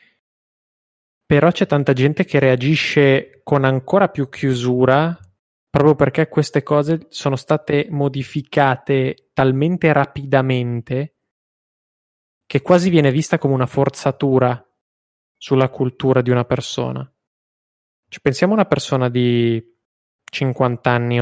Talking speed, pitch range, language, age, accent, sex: 110 wpm, 125-145 Hz, Italian, 20-39, native, male